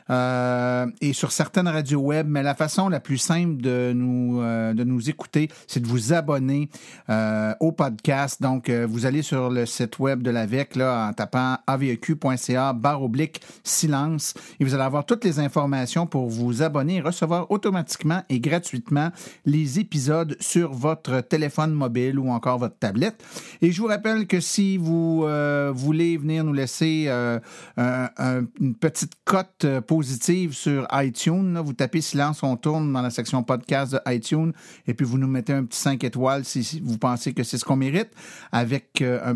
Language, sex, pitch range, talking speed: French, male, 125-165 Hz, 180 wpm